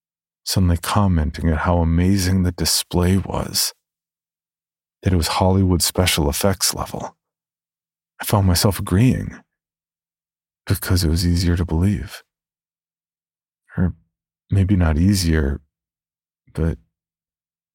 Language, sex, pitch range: English, male, 85-95 Hz